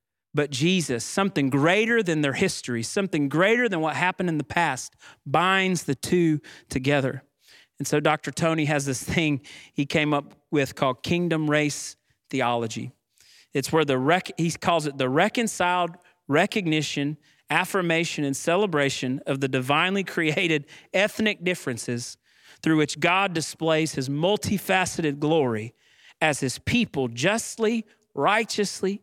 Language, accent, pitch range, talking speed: English, American, 145-195 Hz, 135 wpm